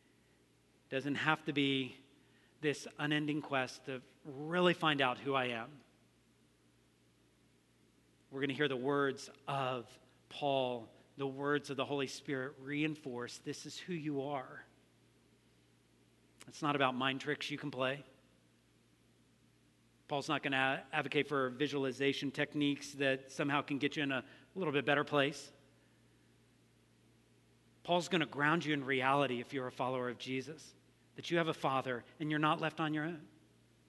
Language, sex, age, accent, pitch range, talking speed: English, male, 40-59, American, 125-150 Hz, 150 wpm